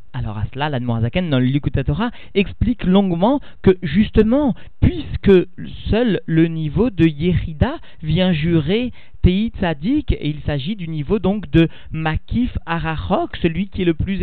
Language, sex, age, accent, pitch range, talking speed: French, male, 40-59, French, 150-190 Hz, 150 wpm